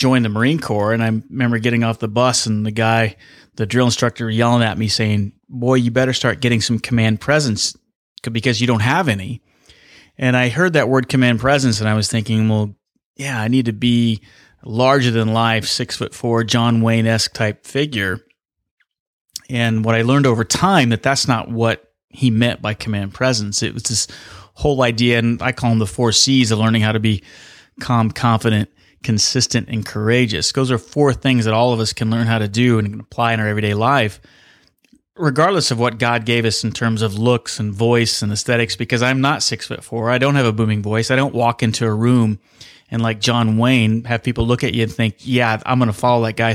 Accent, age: American, 30-49